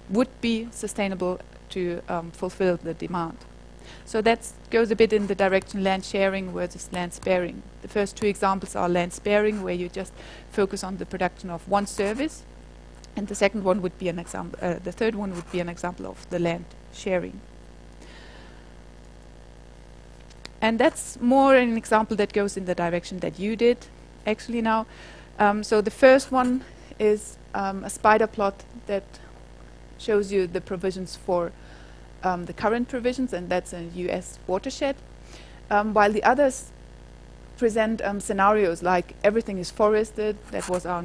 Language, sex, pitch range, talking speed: English, female, 175-215 Hz, 165 wpm